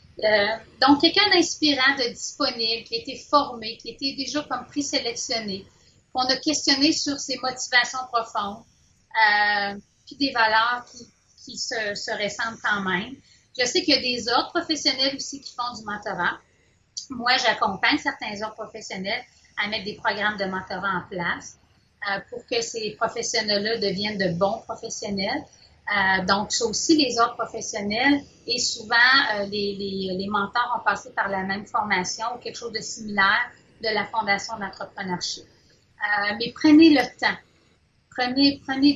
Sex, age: female, 30-49